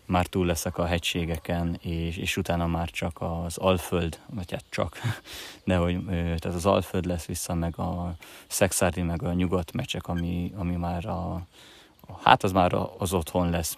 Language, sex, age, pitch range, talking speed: Hungarian, male, 20-39, 90-95 Hz, 160 wpm